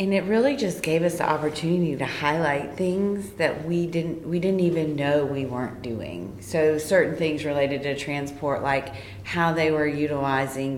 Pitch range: 130-155 Hz